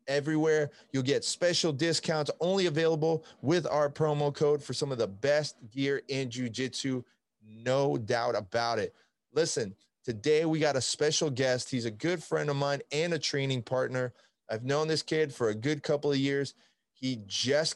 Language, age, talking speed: English, 30-49, 175 wpm